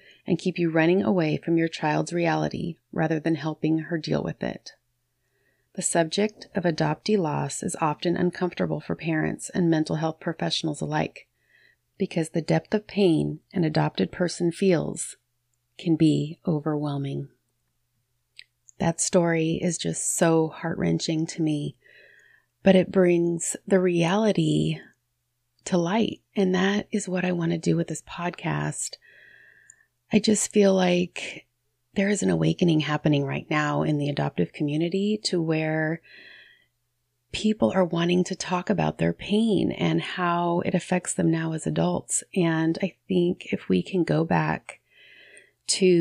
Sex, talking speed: female, 145 wpm